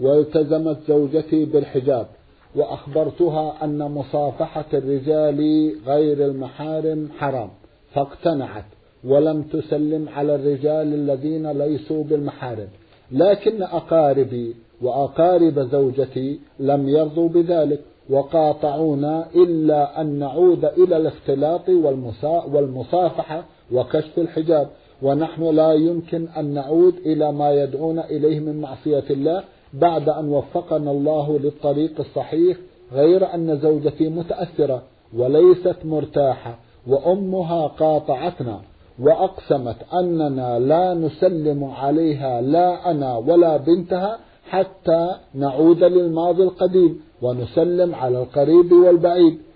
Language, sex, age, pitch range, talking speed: Arabic, male, 50-69, 140-170 Hz, 95 wpm